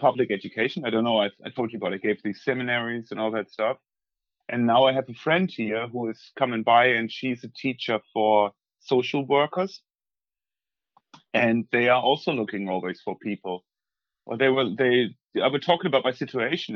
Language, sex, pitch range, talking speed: English, male, 110-135 Hz, 195 wpm